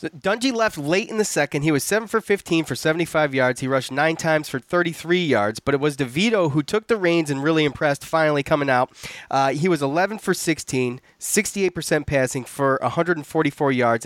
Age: 30-49